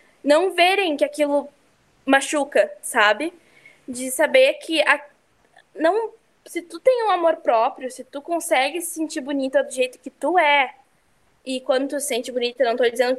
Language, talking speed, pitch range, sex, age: Portuguese, 170 wpm, 265-335 Hz, female, 10-29